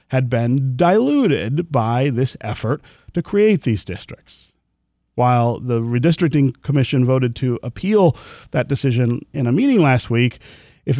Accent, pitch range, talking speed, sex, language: American, 115-155 Hz, 135 wpm, male, English